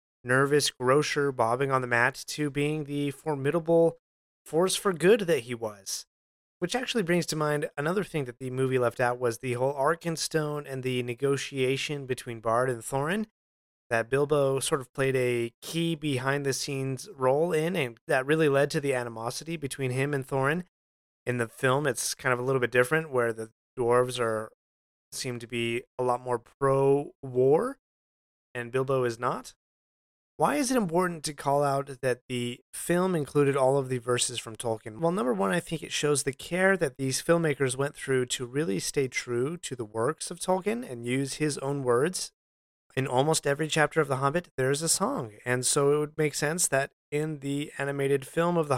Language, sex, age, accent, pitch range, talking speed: English, male, 30-49, American, 125-155 Hz, 190 wpm